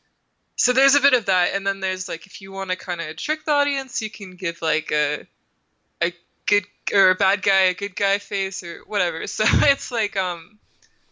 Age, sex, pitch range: 20-39, female, 170-200 Hz